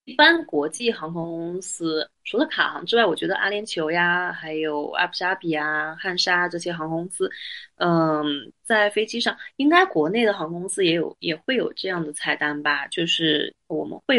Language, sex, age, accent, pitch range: Chinese, female, 20-39, native, 160-210 Hz